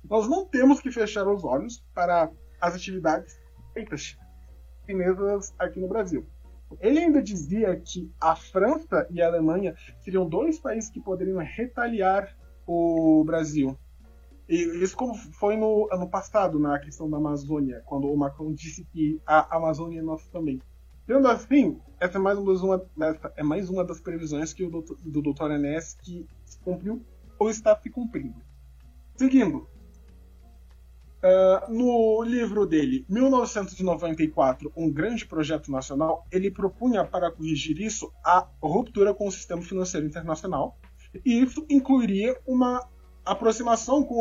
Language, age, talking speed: Portuguese, 20-39, 145 wpm